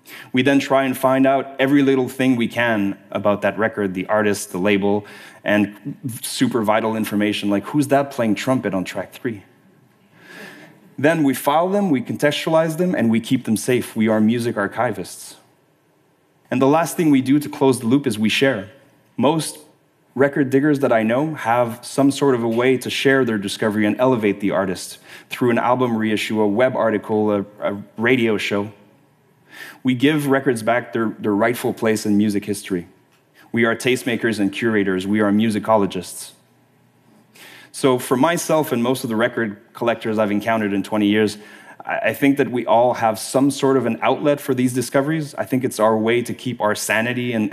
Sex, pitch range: male, 105-130 Hz